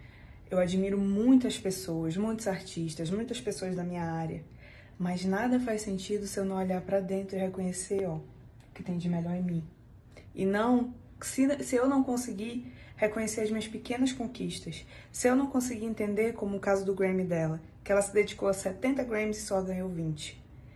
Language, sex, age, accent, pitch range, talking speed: Portuguese, female, 20-39, Brazilian, 175-215 Hz, 190 wpm